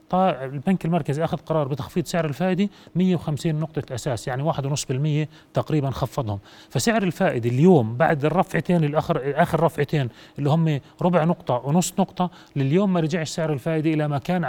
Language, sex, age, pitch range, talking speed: Arabic, male, 30-49, 130-155 Hz, 150 wpm